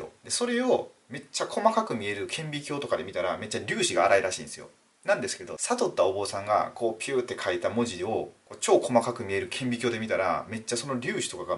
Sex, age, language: male, 30-49, Japanese